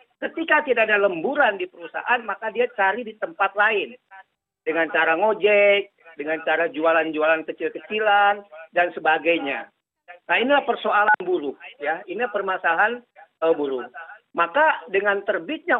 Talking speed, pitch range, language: 125 wpm, 185-245 Hz, Indonesian